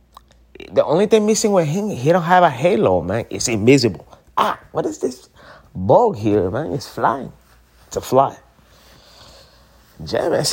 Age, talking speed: 30-49, 160 wpm